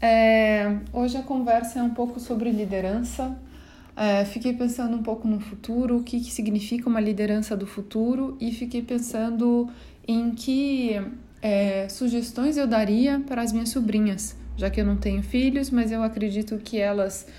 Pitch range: 205-245 Hz